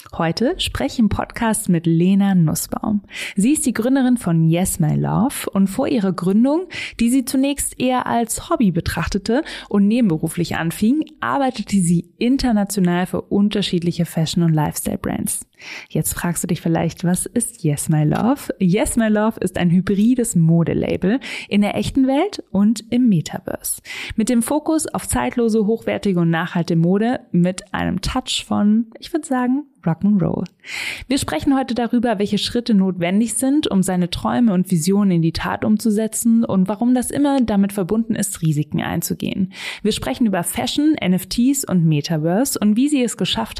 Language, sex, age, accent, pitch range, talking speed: German, female, 20-39, German, 175-245 Hz, 160 wpm